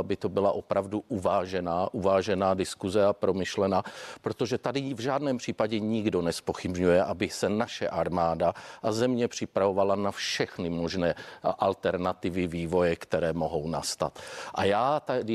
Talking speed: 135 wpm